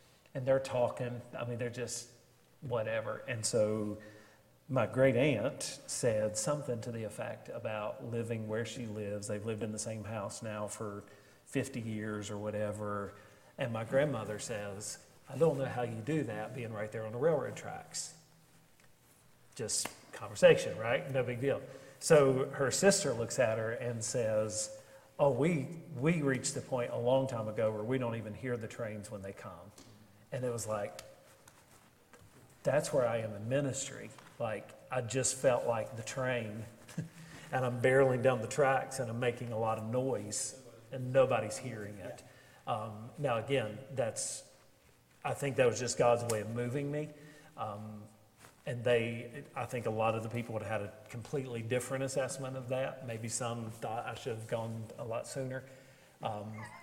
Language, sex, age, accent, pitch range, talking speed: English, male, 40-59, American, 110-135 Hz, 175 wpm